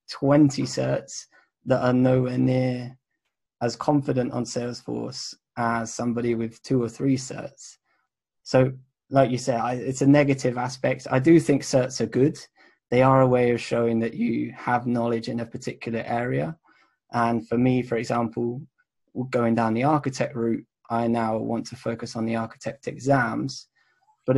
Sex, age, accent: male, 20-39, British